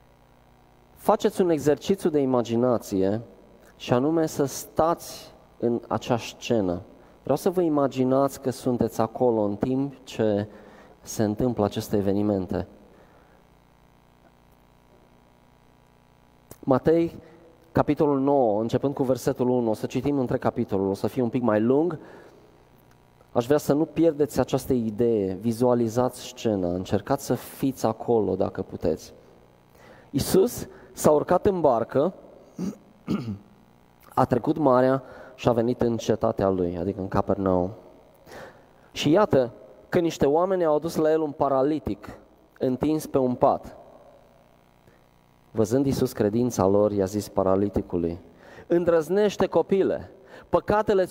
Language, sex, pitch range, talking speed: Romanian, male, 90-140 Hz, 120 wpm